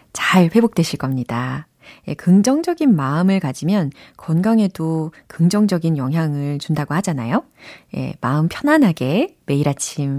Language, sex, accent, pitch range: Korean, female, native, 150-210 Hz